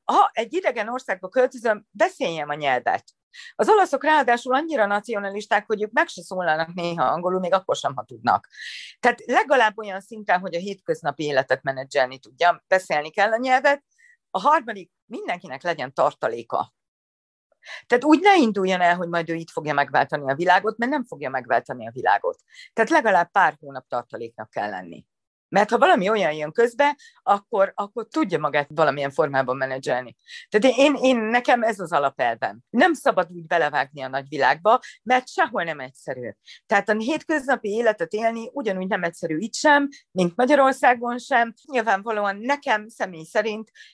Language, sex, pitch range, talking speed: Hungarian, female, 170-255 Hz, 160 wpm